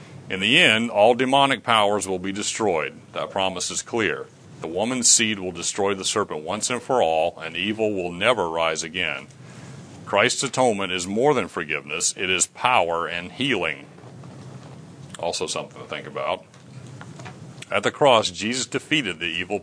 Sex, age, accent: male, 40-59, American